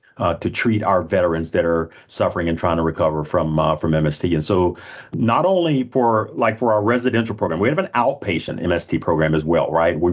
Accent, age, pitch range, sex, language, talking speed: American, 40-59, 85-110 Hz, male, English, 215 wpm